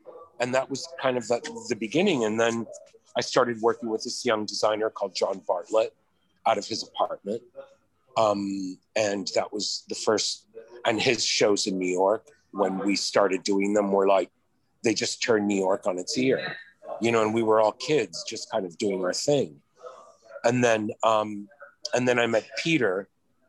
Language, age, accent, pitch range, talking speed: English, 40-59, American, 105-150 Hz, 180 wpm